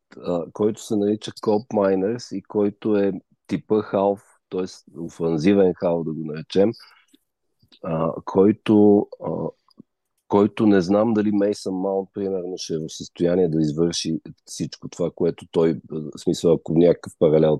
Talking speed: 140 wpm